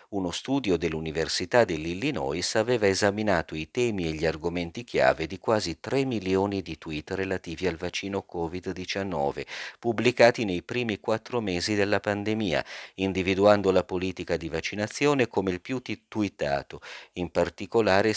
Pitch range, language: 80-100 Hz, Italian